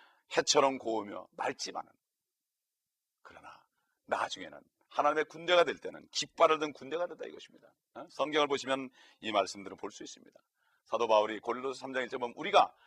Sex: male